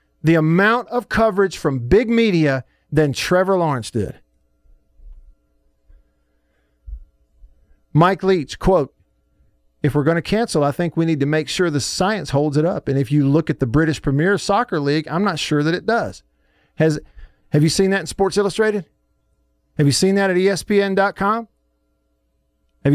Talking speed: 160 wpm